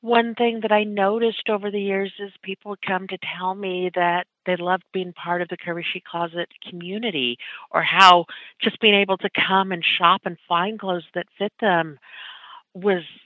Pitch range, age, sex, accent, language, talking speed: 175-215 Hz, 50-69, female, American, English, 180 wpm